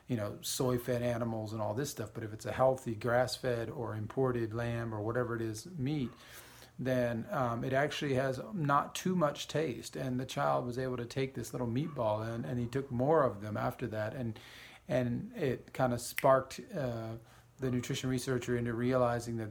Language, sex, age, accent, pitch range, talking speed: English, male, 40-59, American, 115-130 Hz, 195 wpm